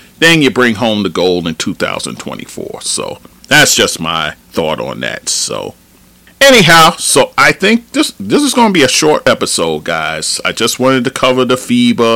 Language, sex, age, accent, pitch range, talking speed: English, male, 40-59, American, 105-130 Hz, 185 wpm